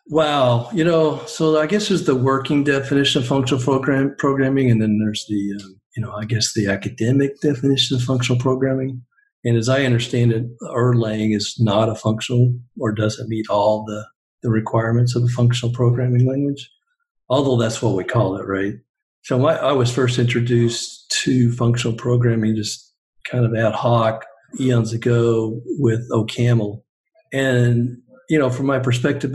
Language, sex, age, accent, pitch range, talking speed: English, male, 50-69, American, 115-135 Hz, 170 wpm